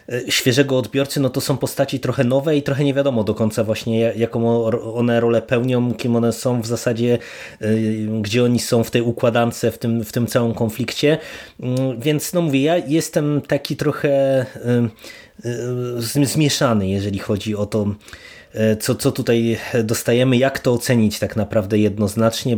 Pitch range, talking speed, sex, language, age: 110-130 Hz, 150 wpm, male, Polish, 20-39